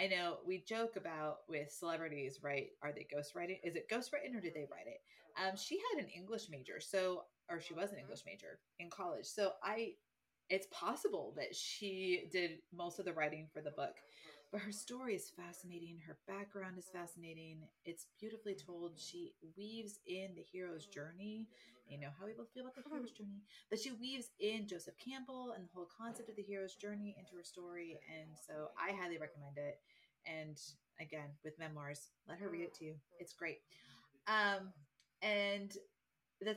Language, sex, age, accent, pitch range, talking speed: English, female, 30-49, American, 170-215 Hz, 185 wpm